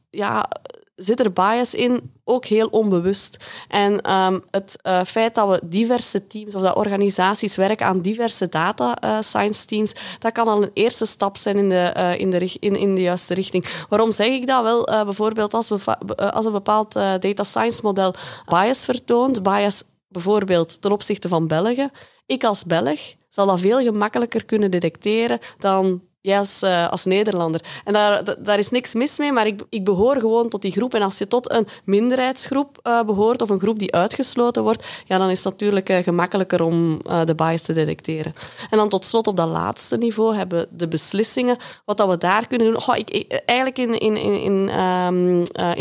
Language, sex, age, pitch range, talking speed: Dutch, female, 20-39, 185-225 Hz, 200 wpm